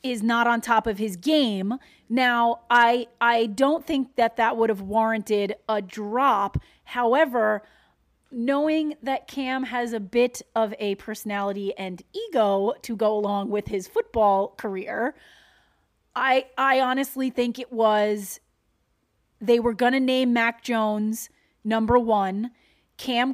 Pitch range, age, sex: 220-270 Hz, 30-49, female